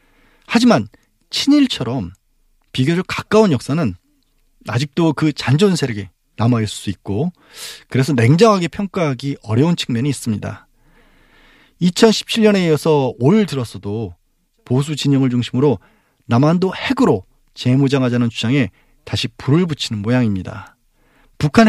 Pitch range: 115-170 Hz